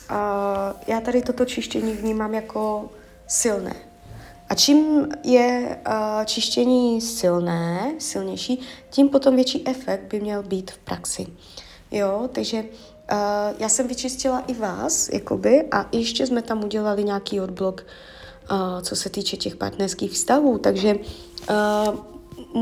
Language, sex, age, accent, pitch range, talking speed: Czech, female, 20-39, native, 200-240 Hz, 130 wpm